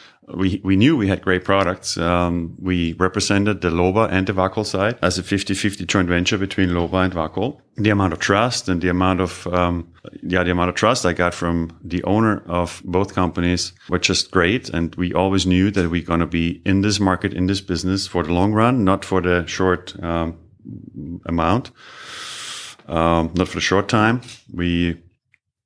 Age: 30-49